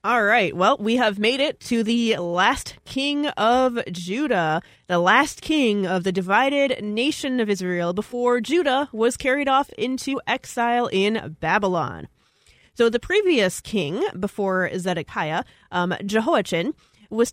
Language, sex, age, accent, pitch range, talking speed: English, female, 30-49, American, 190-250 Hz, 140 wpm